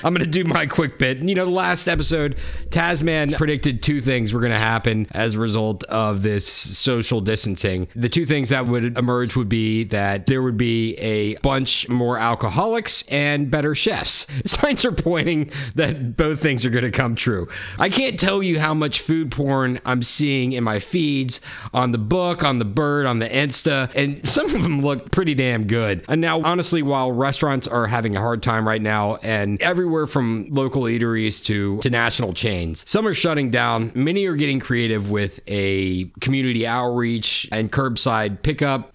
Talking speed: 190 wpm